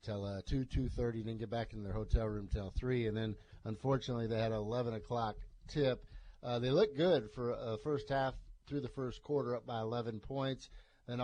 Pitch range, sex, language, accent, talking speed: 110-130 Hz, male, English, American, 205 wpm